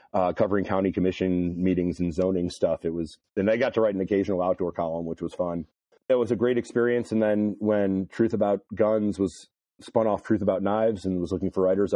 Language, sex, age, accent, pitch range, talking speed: English, male, 40-59, American, 95-110 Hz, 220 wpm